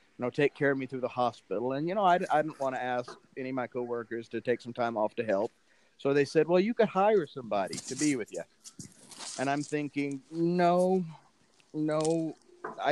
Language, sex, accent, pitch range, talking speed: English, male, American, 130-165 Hz, 215 wpm